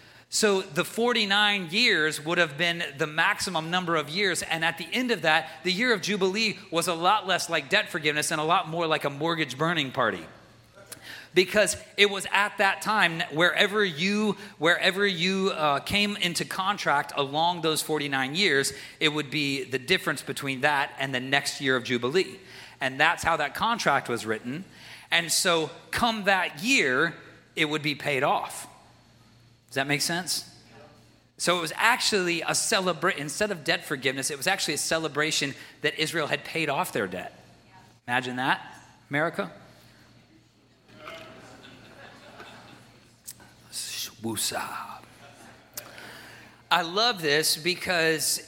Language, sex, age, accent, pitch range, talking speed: English, male, 40-59, American, 145-190 Hz, 145 wpm